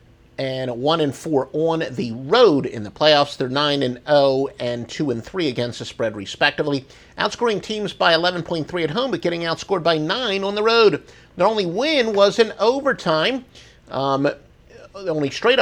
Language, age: English, 50-69